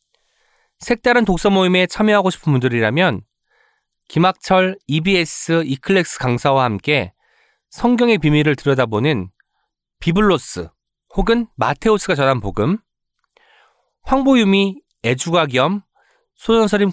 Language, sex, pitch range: Korean, male, 140-210 Hz